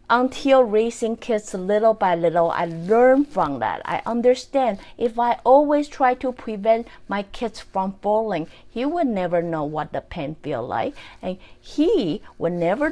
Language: English